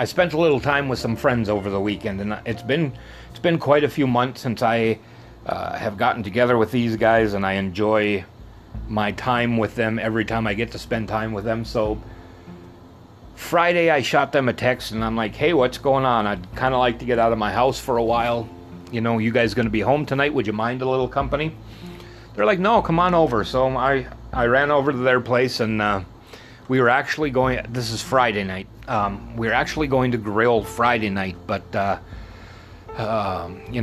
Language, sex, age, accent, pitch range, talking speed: English, male, 30-49, American, 105-125 Hz, 220 wpm